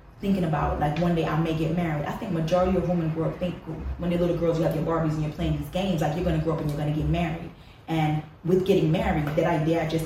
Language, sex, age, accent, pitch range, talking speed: English, female, 20-39, American, 155-175 Hz, 290 wpm